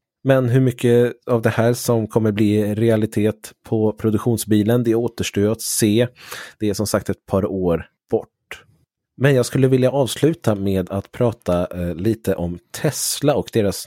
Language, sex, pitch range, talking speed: Swedish, male, 95-120 Hz, 160 wpm